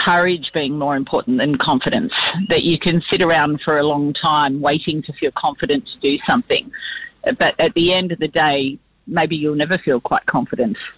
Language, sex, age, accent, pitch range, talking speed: English, female, 40-59, Australian, 145-175 Hz, 190 wpm